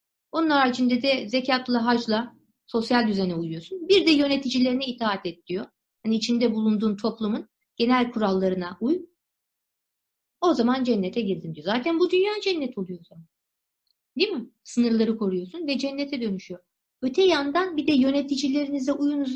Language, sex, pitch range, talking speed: Turkish, female, 215-280 Hz, 140 wpm